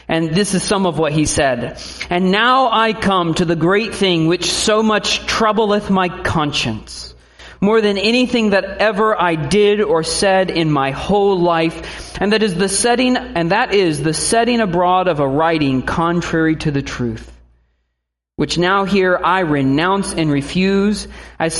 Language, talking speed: English, 170 wpm